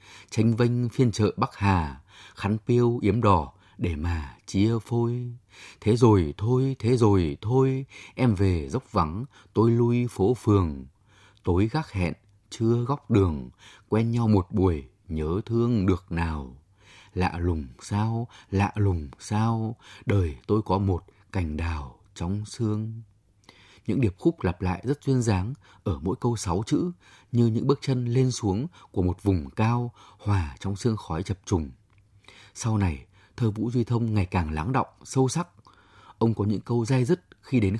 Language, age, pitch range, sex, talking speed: Vietnamese, 20-39, 95-120 Hz, male, 165 wpm